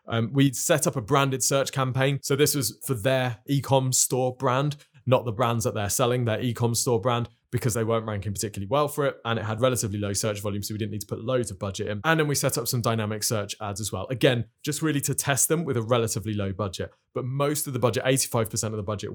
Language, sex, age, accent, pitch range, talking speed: English, male, 20-39, British, 110-135 Hz, 255 wpm